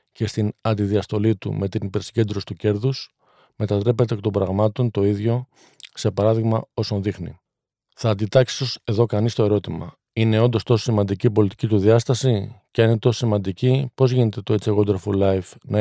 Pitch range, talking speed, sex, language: 105-115 Hz, 175 wpm, male, Greek